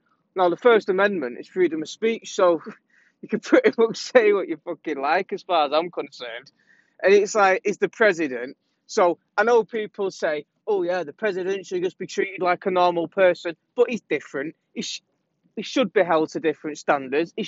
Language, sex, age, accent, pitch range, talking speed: English, male, 20-39, British, 180-255 Hz, 200 wpm